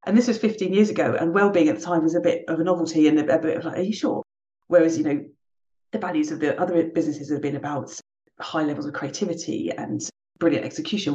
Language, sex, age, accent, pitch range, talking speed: English, female, 40-59, British, 155-200 Hz, 235 wpm